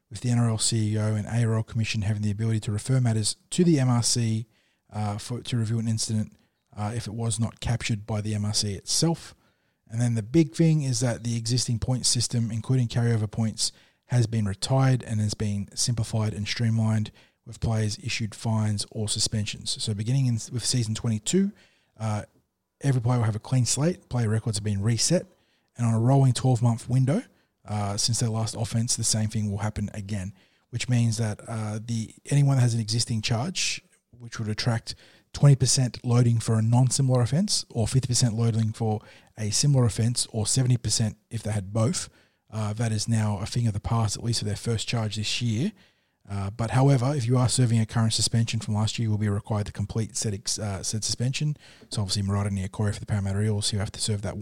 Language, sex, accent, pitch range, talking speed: English, male, Australian, 105-120 Hz, 205 wpm